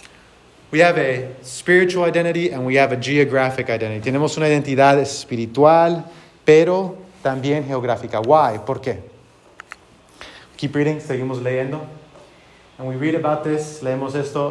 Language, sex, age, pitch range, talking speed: English, male, 30-49, 130-160 Hz, 130 wpm